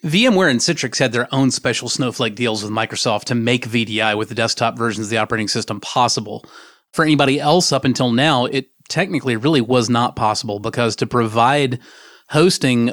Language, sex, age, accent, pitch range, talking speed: English, male, 30-49, American, 115-150 Hz, 180 wpm